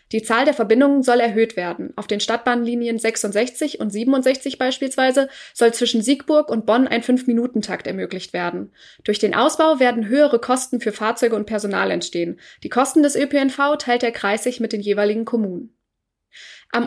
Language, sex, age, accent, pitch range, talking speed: German, female, 20-39, German, 215-265 Hz, 165 wpm